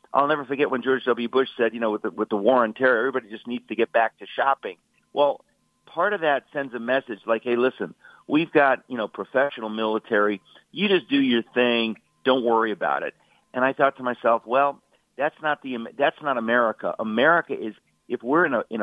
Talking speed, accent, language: 220 wpm, American, English